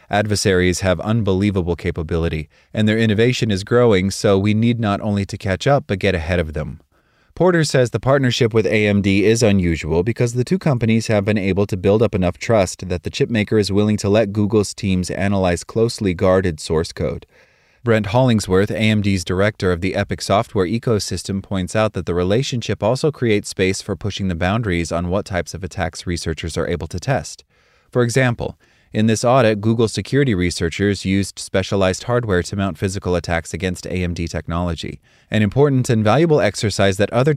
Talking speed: 180 wpm